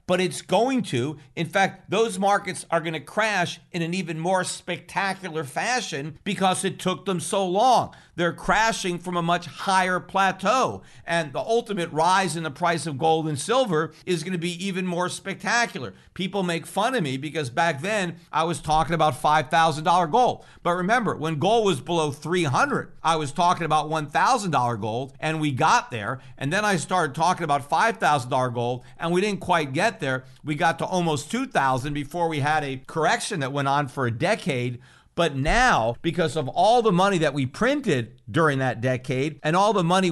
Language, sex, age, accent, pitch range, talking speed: English, male, 50-69, American, 150-190 Hz, 185 wpm